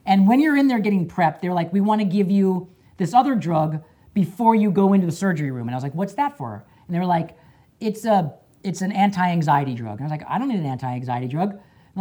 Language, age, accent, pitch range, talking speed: English, 40-59, American, 150-210 Hz, 275 wpm